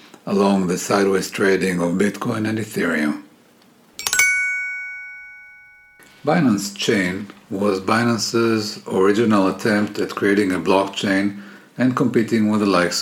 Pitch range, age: 95-115 Hz, 50-69